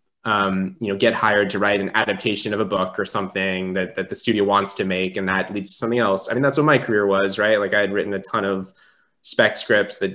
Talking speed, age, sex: 260 wpm, 10-29, male